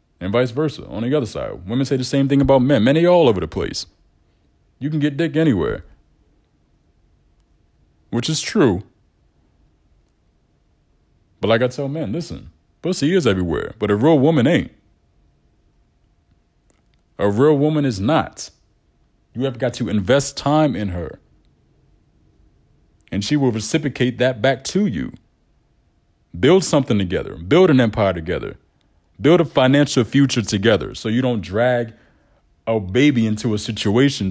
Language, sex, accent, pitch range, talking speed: English, male, American, 100-140 Hz, 145 wpm